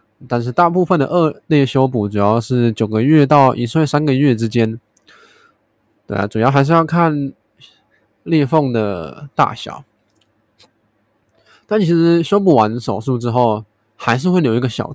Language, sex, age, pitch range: Chinese, male, 20-39, 110-150 Hz